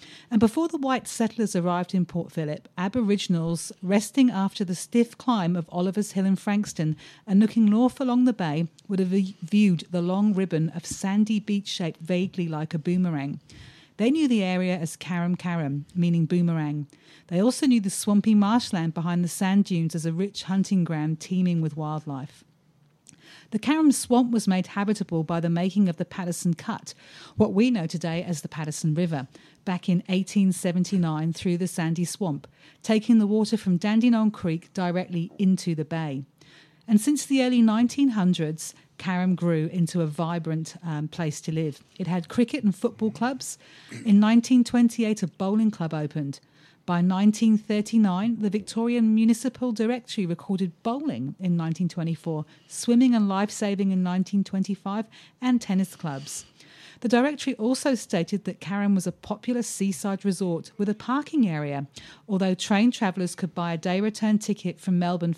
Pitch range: 165-215 Hz